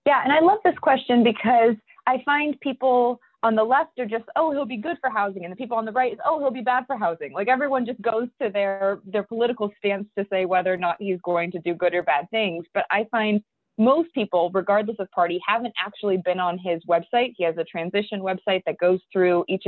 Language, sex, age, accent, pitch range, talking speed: English, female, 20-39, American, 175-235 Hz, 240 wpm